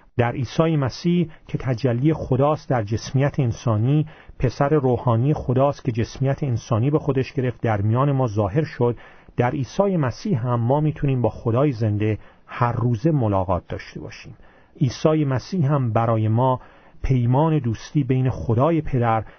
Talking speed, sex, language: 145 wpm, male, Persian